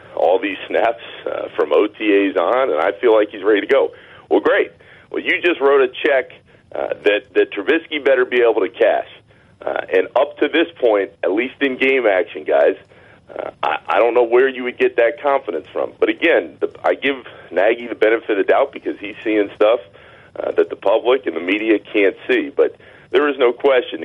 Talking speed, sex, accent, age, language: 210 wpm, male, American, 40-59, English